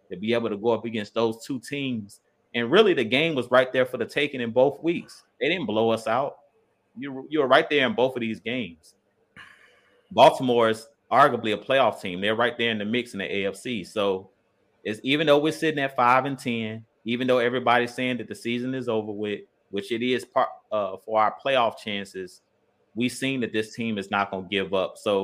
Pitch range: 105-130 Hz